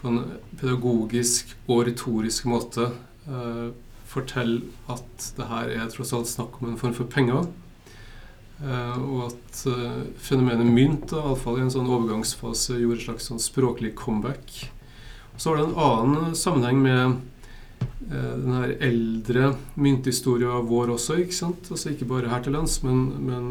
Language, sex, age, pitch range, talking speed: English, male, 30-49, 120-135 Hz, 155 wpm